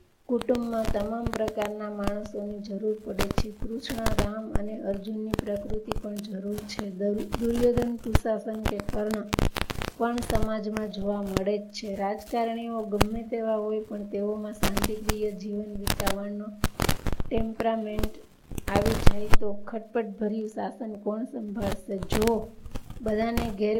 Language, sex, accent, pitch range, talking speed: Gujarati, female, native, 205-225 Hz, 35 wpm